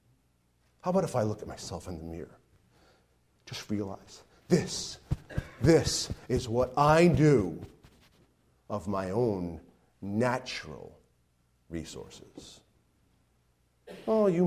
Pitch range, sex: 100-160 Hz, male